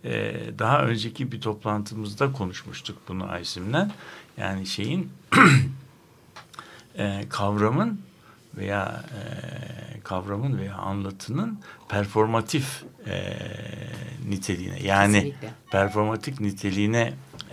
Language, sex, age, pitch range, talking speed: Turkish, male, 60-79, 95-120 Hz, 65 wpm